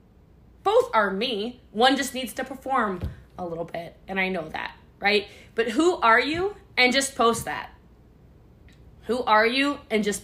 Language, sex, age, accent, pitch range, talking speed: English, female, 20-39, American, 215-280 Hz, 170 wpm